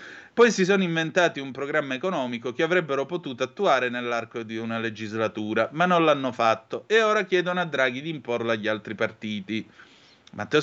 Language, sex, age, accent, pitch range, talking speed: Italian, male, 30-49, native, 115-155 Hz, 170 wpm